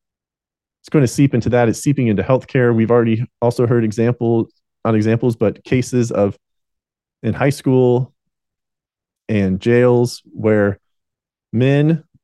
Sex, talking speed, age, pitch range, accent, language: male, 130 wpm, 30-49, 110-140 Hz, American, English